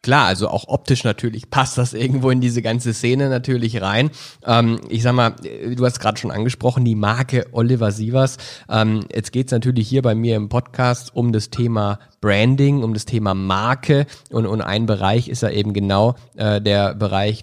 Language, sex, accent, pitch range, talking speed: German, male, German, 110-135 Hz, 195 wpm